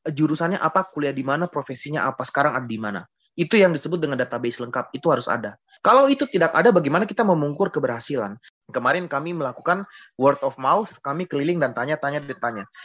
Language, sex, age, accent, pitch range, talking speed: Indonesian, male, 30-49, native, 135-180 Hz, 185 wpm